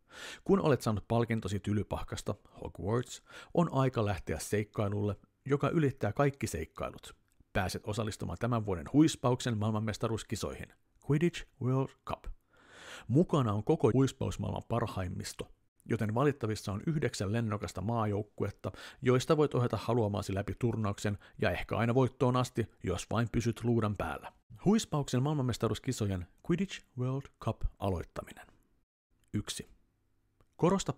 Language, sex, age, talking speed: Finnish, male, 50-69, 110 wpm